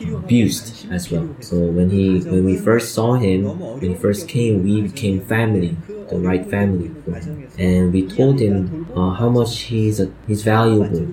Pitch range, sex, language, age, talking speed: 90-115 Hz, male, French, 20-39, 185 wpm